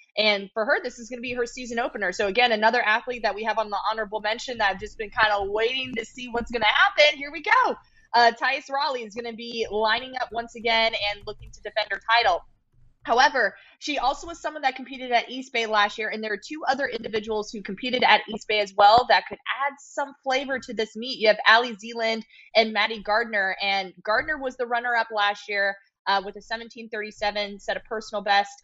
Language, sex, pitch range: English, female, 205-245 Hz